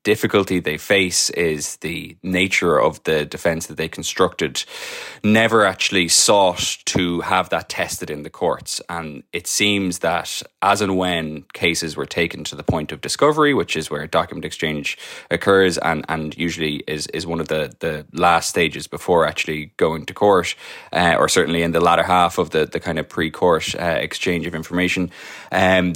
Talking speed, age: 180 wpm, 20-39